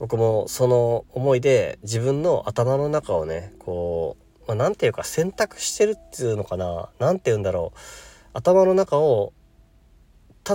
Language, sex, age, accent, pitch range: Japanese, male, 40-59, native, 100-130 Hz